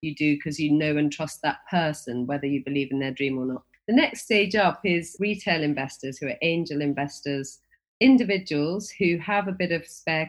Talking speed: 205 wpm